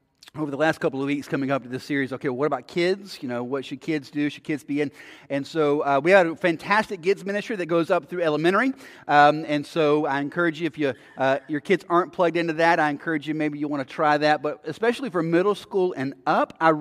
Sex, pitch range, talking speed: male, 140-195 Hz, 250 wpm